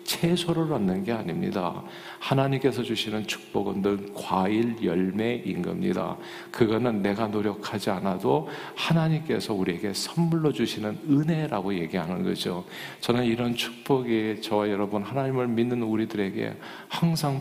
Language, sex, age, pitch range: Korean, male, 50-69, 105-140 Hz